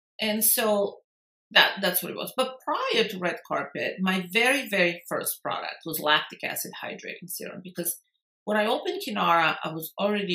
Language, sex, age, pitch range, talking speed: English, female, 50-69, 175-235 Hz, 175 wpm